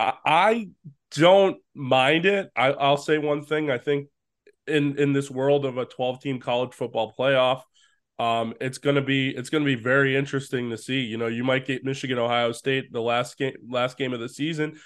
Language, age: English, 20-39